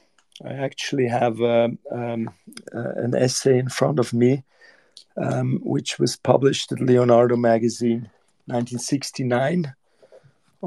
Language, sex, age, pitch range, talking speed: English, male, 40-59, 120-135 Hz, 110 wpm